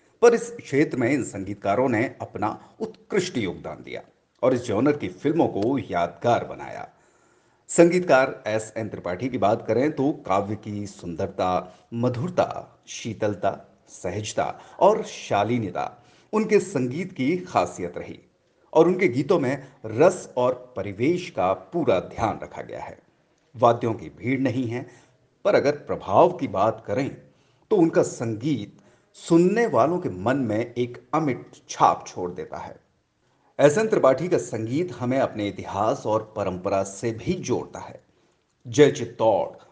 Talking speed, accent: 135 wpm, native